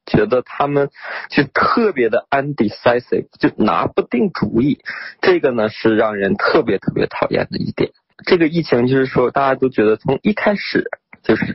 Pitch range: 110-140 Hz